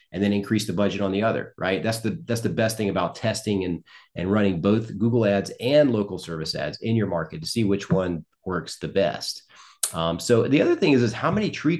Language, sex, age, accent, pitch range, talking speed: English, male, 40-59, American, 100-120 Hz, 240 wpm